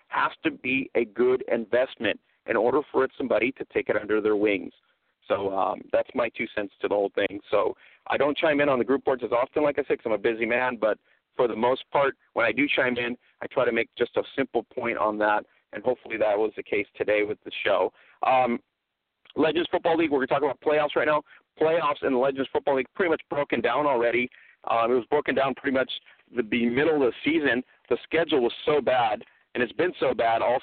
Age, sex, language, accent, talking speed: 40-59, male, English, American, 240 wpm